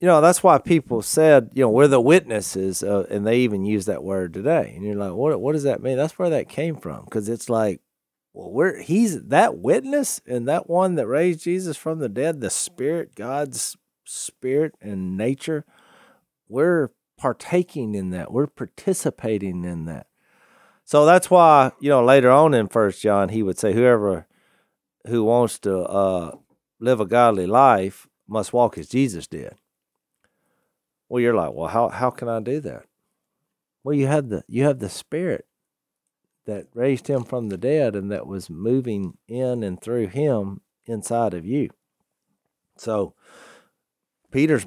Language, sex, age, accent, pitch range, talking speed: English, male, 40-59, American, 100-135 Hz, 170 wpm